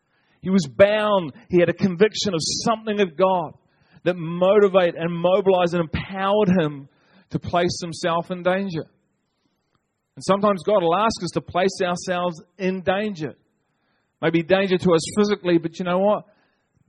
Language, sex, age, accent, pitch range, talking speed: English, male, 40-59, Australian, 130-175 Hz, 155 wpm